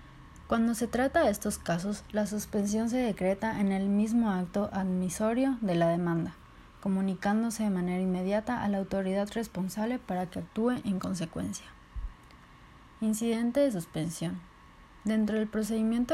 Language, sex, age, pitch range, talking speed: Spanish, female, 30-49, 185-220 Hz, 140 wpm